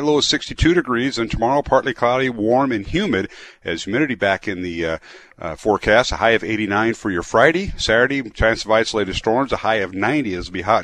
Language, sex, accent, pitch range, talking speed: English, male, American, 90-120 Hz, 210 wpm